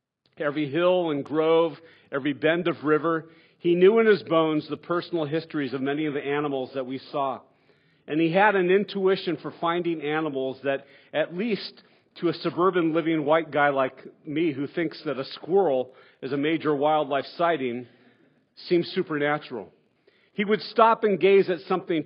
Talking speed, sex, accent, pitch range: 170 wpm, male, American, 145-180 Hz